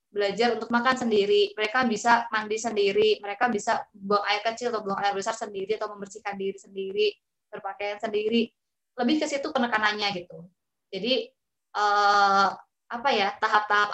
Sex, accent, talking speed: female, native, 145 wpm